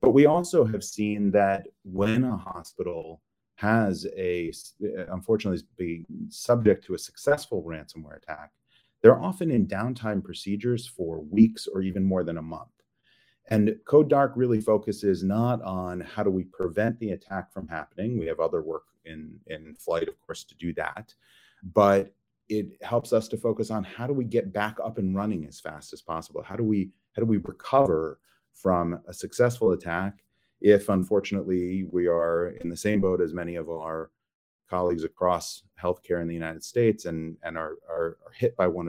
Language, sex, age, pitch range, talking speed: English, male, 30-49, 85-110 Hz, 180 wpm